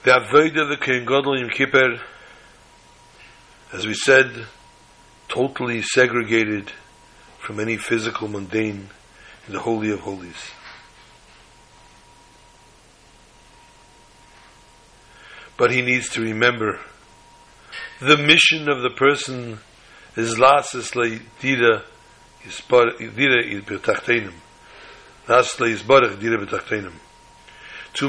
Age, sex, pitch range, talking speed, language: 60-79, male, 115-145 Hz, 75 wpm, English